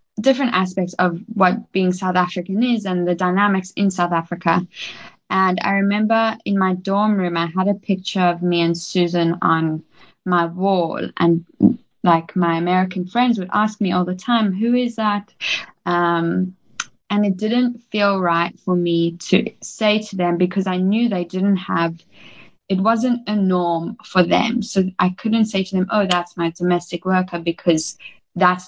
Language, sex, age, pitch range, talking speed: English, female, 10-29, 170-195 Hz, 175 wpm